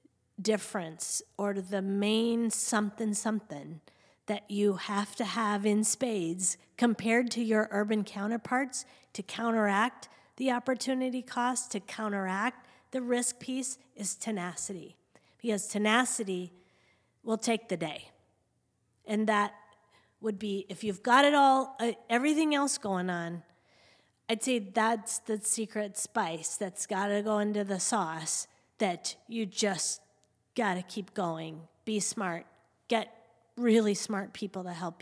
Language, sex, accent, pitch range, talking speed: English, female, American, 195-230 Hz, 130 wpm